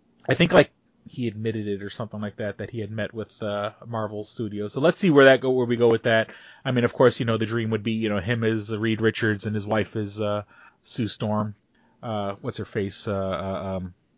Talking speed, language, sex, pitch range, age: 245 wpm, English, male, 110-135 Hz, 30-49